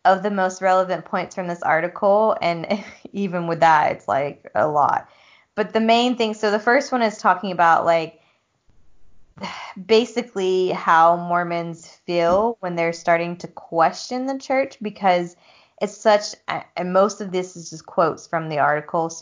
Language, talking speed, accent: English, 165 wpm, American